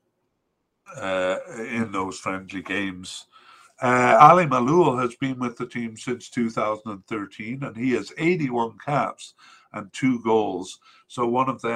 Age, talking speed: 60-79, 140 wpm